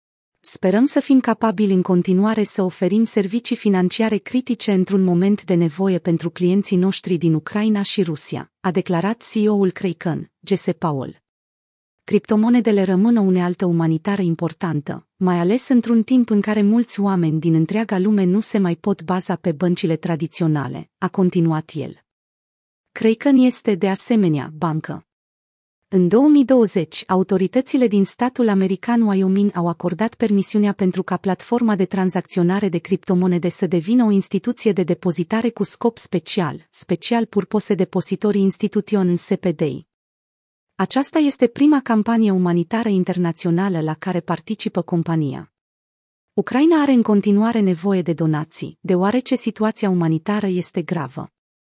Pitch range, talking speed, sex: 175-215 Hz, 135 wpm, female